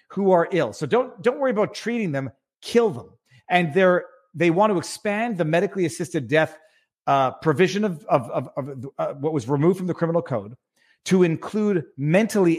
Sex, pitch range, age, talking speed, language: male, 150-205 Hz, 40-59, 185 wpm, English